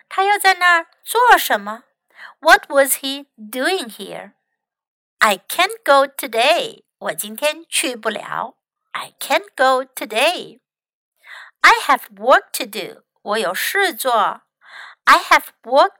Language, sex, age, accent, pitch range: Chinese, female, 60-79, American, 225-330 Hz